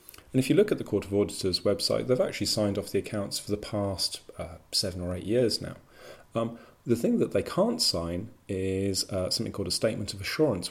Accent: British